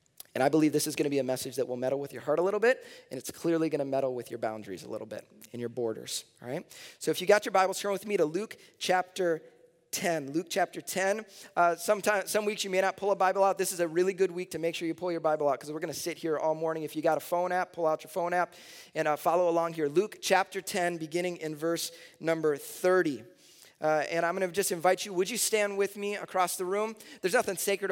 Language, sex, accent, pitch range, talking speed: English, male, American, 155-190 Hz, 275 wpm